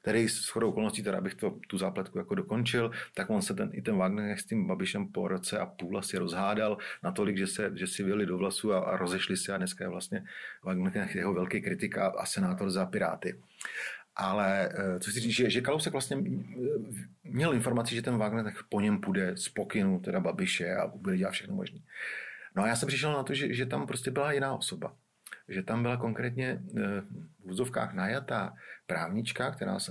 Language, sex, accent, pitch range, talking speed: Czech, male, native, 95-135 Hz, 195 wpm